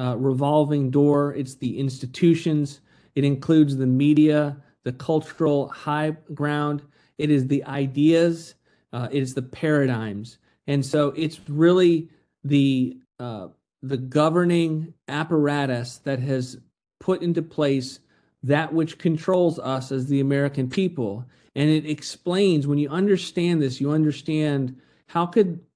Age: 40-59